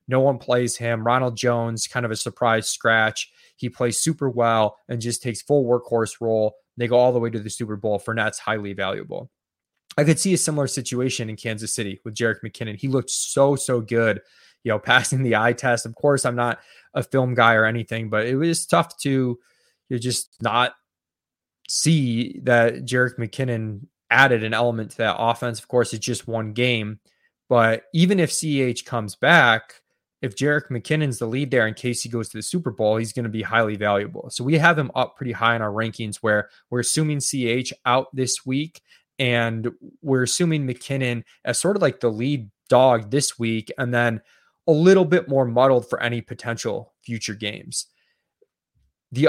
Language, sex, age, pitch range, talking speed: English, male, 20-39, 115-135 Hz, 195 wpm